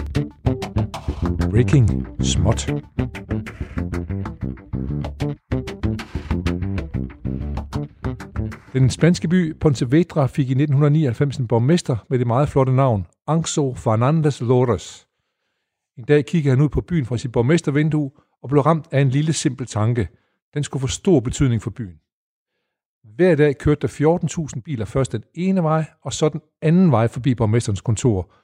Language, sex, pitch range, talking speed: Danish, male, 115-155 Hz, 135 wpm